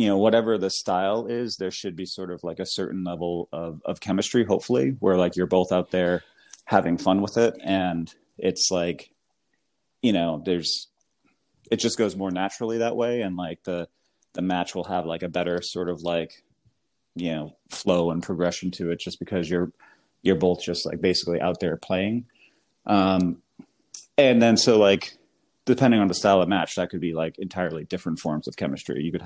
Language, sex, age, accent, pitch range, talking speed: English, male, 30-49, American, 85-95 Hz, 195 wpm